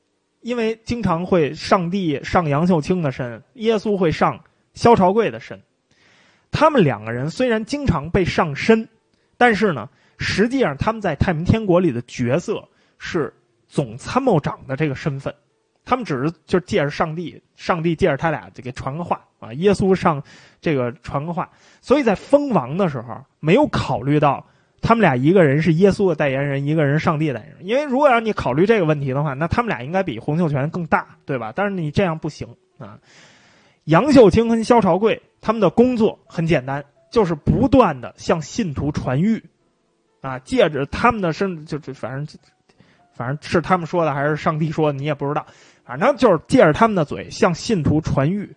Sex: male